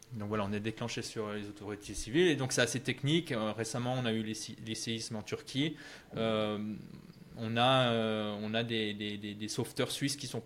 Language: French